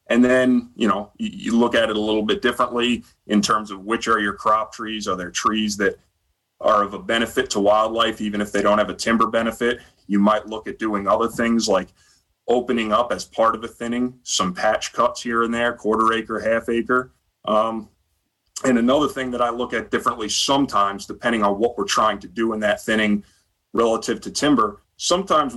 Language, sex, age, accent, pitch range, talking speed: English, male, 30-49, American, 105-125 Hz, 205 wpm